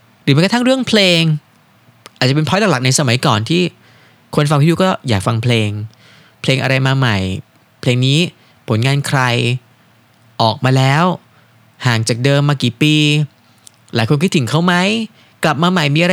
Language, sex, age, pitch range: Thai, male, 20-39, 115-165 Hz